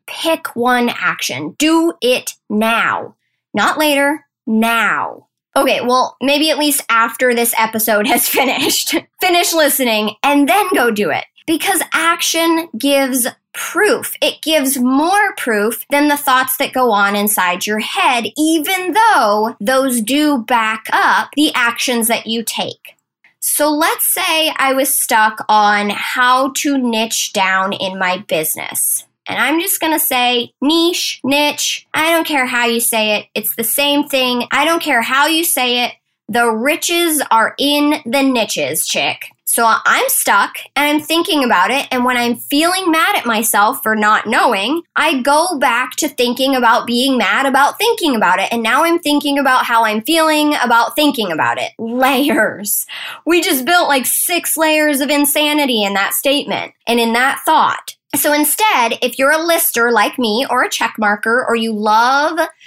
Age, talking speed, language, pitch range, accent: 10-29, 170 wpm, English, 230-315 Hz, American